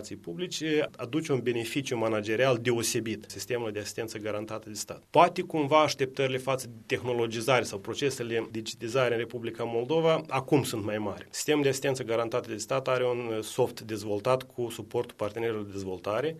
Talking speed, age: 155 wpm, 30-49